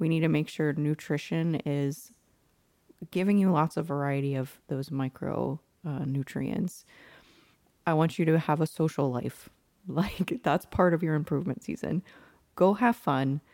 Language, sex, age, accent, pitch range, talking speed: English, female, 30-49, American, 145-175 Hz, 155 wpm